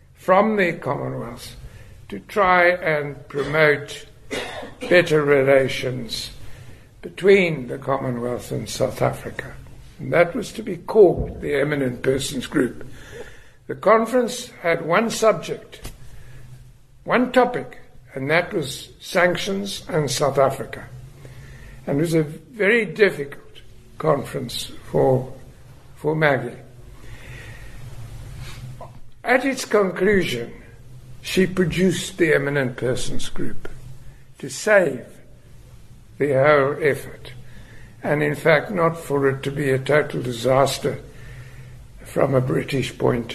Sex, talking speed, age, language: male, 110 wpm, 60-79, English